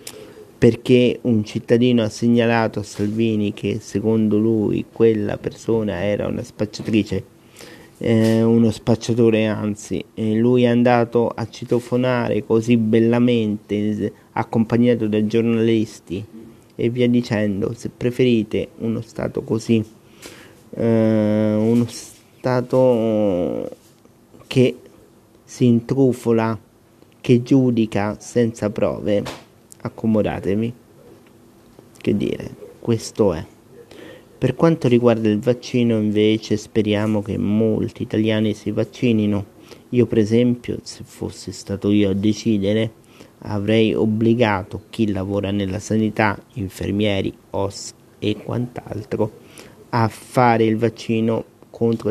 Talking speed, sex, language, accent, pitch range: 100 wpm, male, Italian, native, 105-120 Hz